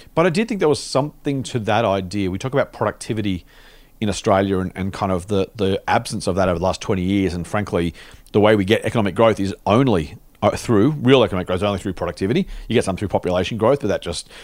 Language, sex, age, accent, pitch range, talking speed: English, male, 40-59, Australian, 95-125 Hz, 235 wpm